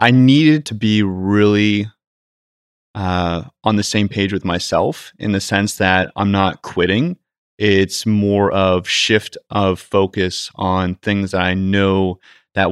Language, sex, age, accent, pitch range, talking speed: English, male, 20-39, American, 90-105 Hz, 145 wpm